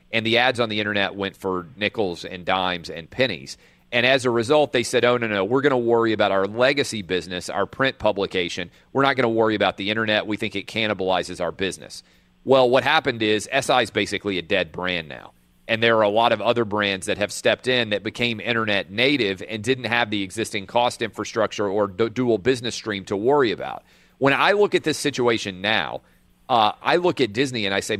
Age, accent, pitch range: 40-59, American, 100-120 Hz